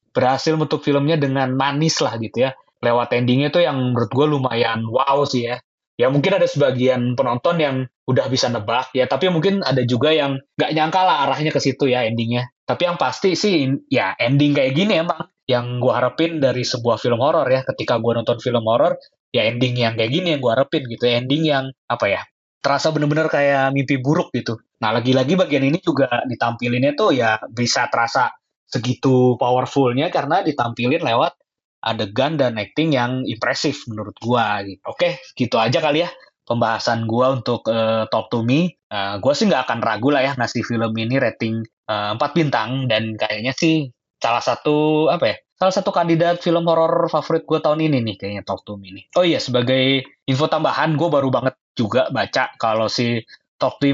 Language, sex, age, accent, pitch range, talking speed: Indonesian, male, 20-39, native, 120-150 Hz, 185 wpm